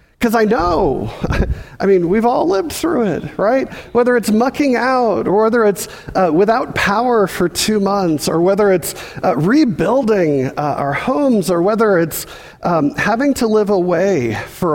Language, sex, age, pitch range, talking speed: English, male, 40-59, 155-215 Hz, 165 wpm